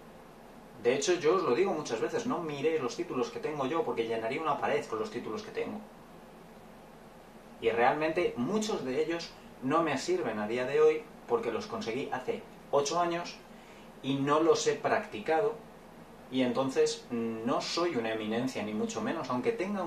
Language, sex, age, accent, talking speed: Spanish, male, 30-49, Spanish, 175 wpm